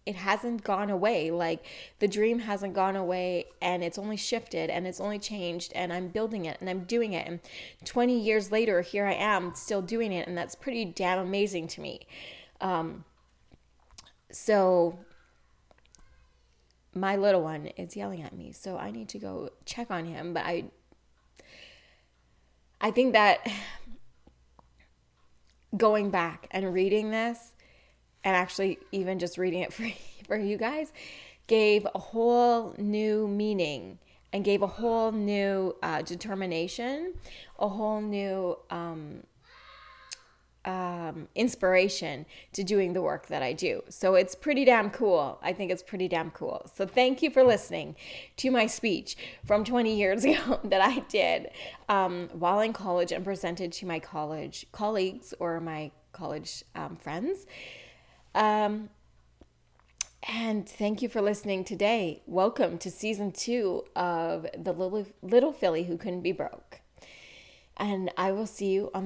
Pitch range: 175-215 Hz